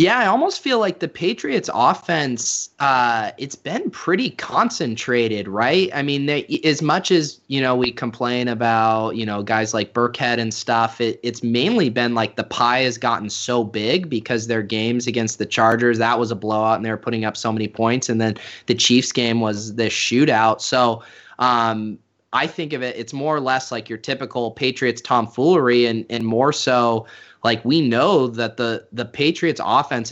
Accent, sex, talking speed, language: American, male, 190 wpm, English